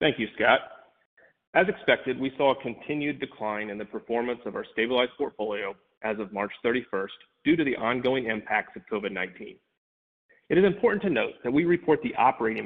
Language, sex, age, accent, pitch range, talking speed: English, male, 30-49, American, 110-140 Hz, 180 wpm